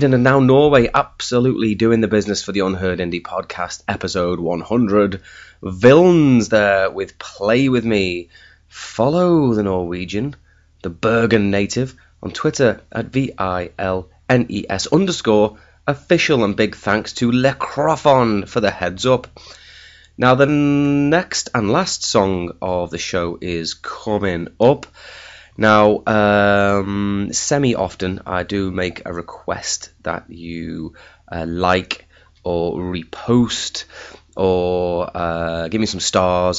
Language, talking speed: English, 120 wpm